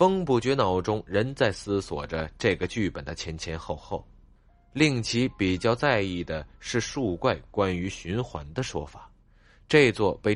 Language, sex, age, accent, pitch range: Chinese, male, 20-39, native, 80-115 Hz